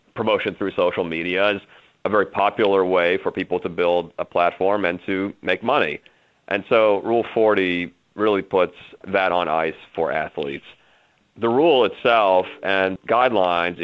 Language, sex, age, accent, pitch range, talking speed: English, male, 40-59, American, 85-100 Hz, 150 wpm